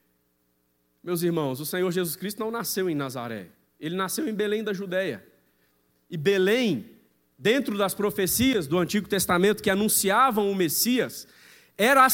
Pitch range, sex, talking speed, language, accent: 185-245 Hz, male, 150 wpm, Portuguese, Brazilian